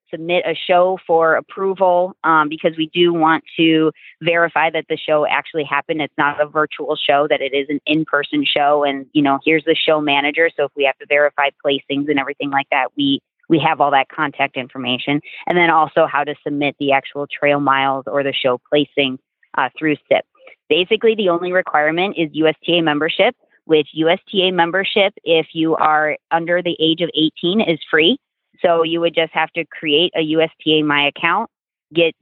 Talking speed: 190 wpm